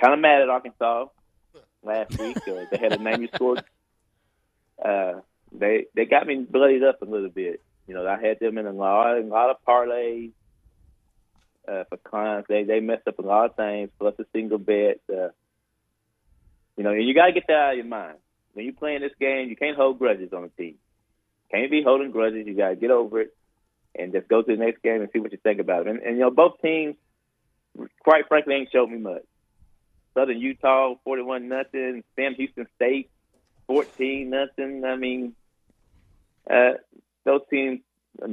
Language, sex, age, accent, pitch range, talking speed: English, male, 20-39, American, 110-135 Hz, 195 wpm